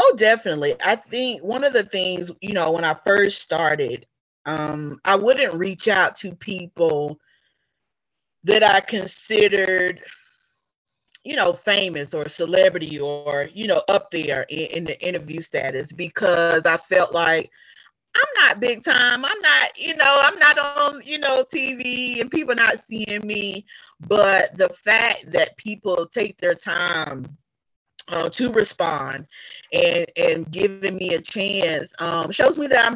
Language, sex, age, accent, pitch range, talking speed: English, female, 30-49, American, 160-225 Hz, 155 wpm